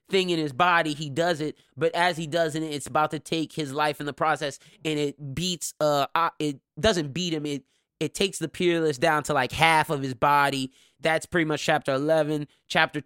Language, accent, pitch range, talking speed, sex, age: English, American, 140-160 Hz, 215 wpm, male, 20-39